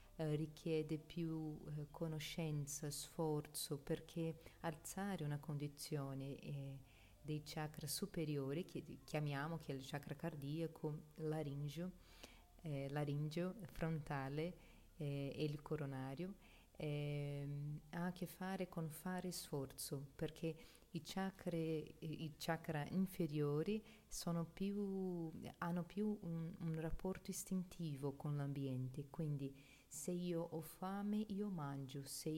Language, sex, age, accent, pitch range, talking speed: Italian, female, 40-59, native, 150-170 Hz, 110 wpm